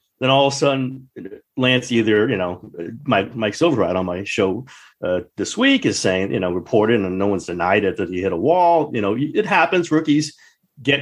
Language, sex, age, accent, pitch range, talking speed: English, male, 40-59, American, 100-130 Hz, 205 wpm